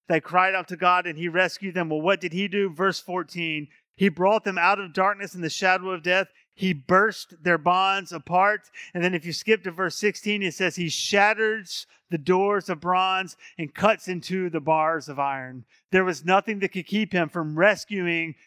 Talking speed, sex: 210 wpm, male